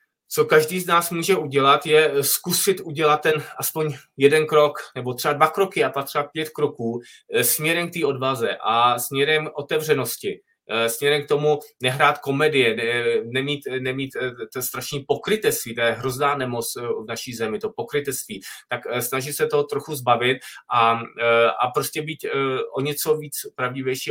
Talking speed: 150 wpm